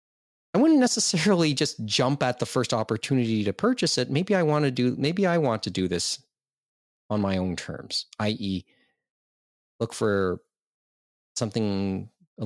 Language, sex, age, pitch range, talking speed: English, male, 30-49, 95-145 Hz, 155 wpm